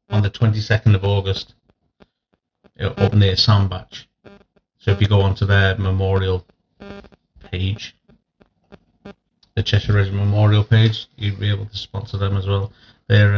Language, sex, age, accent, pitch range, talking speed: English, male, 40-59, British, 100-120 Hz, 140 wpm